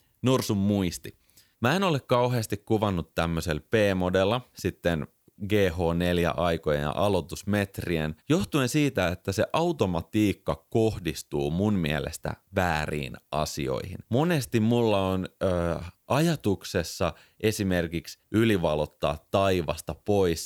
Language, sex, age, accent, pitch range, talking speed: Finnish, male, 30-49, native, 85-115 Hz, 90 wpm